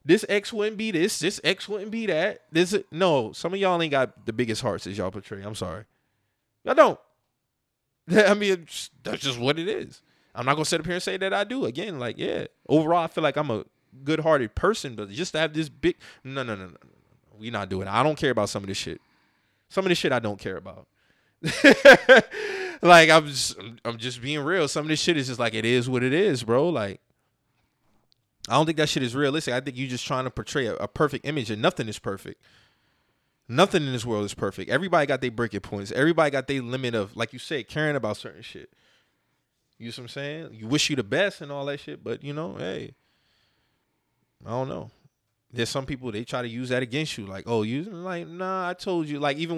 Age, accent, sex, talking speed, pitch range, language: 20-39, American, male, 235 wpm, 115-165 Hz, English